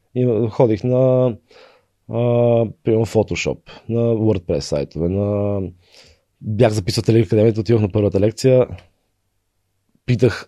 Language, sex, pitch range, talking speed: Bulgarian, male, 95-125 Hz, 105 wpm